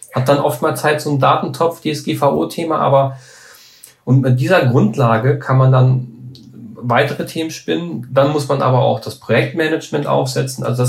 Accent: German